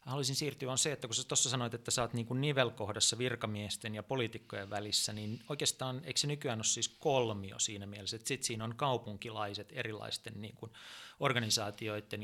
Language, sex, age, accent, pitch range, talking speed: Finnish, male, 30-49, native, 105-130 Hz, 175 wpm